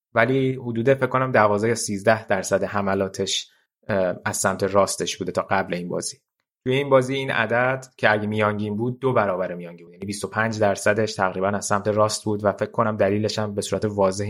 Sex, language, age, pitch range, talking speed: male, Persian, 20-39, 100-115 Hz, 195 wpm